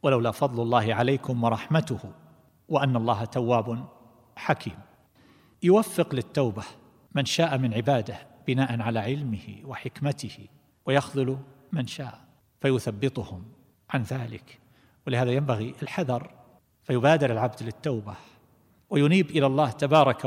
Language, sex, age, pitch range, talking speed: Arabic, male, 50-69, 115-140 Hz, 105 wpm